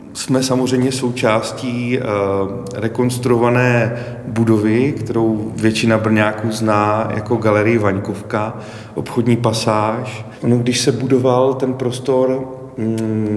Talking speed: 85 wpm